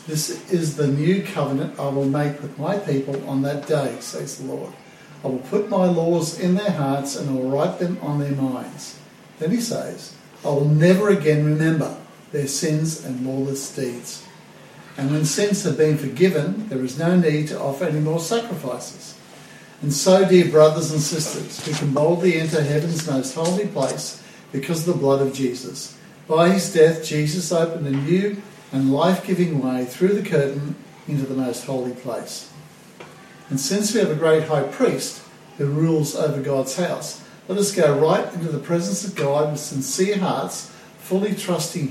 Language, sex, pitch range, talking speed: English, male, 140-180 Hz, 180 wpm